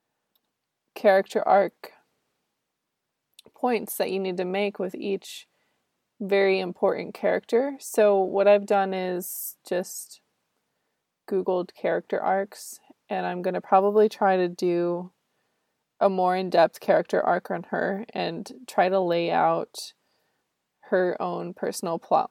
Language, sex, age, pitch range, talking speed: English, female, 20-39, 185-210 Hz, 125 wpm